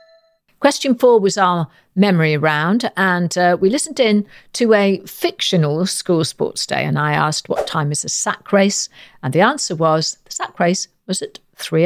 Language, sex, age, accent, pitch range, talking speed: English, female, 50-69, British, 155-220 Hz, 180 wpm